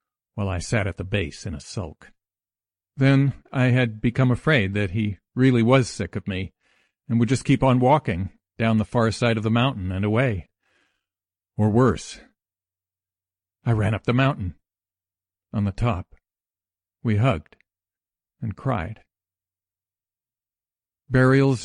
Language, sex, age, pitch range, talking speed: English, male, 50-69, 90-115 Hz, 140 wpm